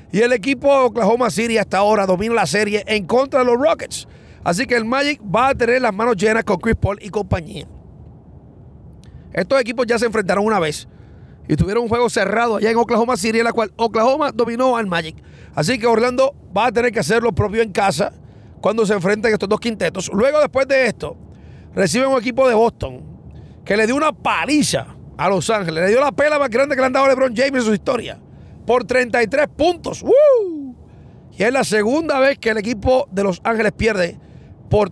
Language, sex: English, male